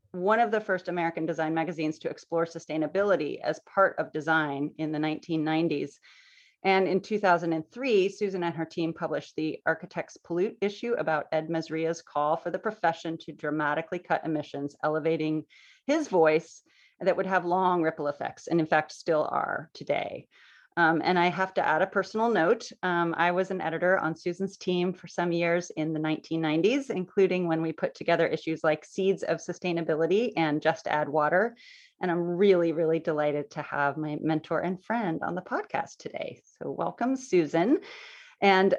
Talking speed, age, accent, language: 170 wpm, 30-49, American, English